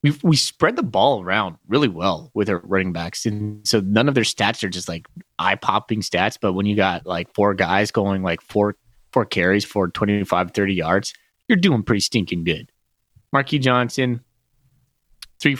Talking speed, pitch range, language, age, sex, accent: 185 wpm, 100-130 Hz, English, 30-49, male, American